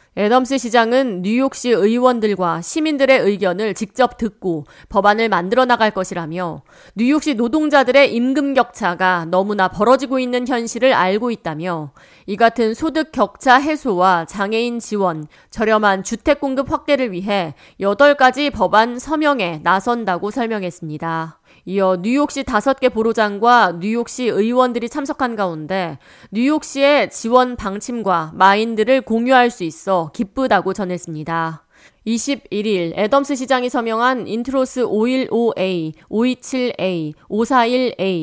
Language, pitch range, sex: Korean, 185-255 Hz, female